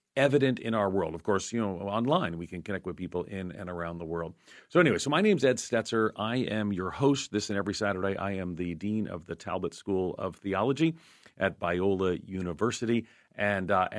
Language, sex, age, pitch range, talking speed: English, male, 40-59, 90-115 Hz, 215 wpm